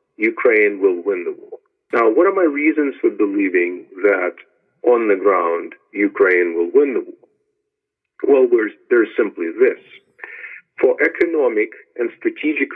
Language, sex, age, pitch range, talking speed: English, male, 50-69, 345-410 Hz, 135 wpm